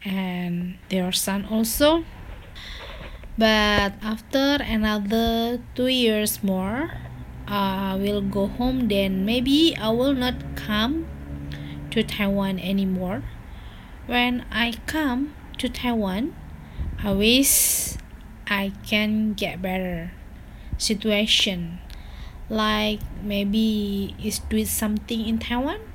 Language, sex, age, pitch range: Chinese, female, 20-39, 195-235 Hz